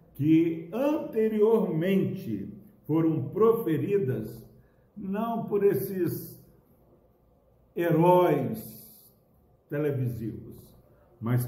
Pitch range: 110-145 Hz